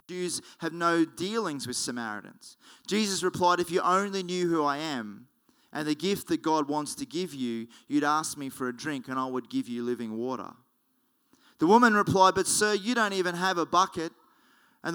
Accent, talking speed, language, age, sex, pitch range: Australian, 195 wpm, English, 30-49, male, 135-190 Hz